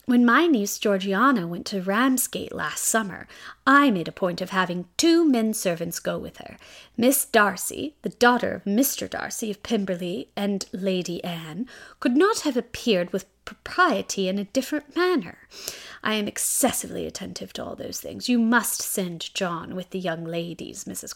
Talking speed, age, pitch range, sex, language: 165 wpm, 30-49, 195-275 Hz, female, English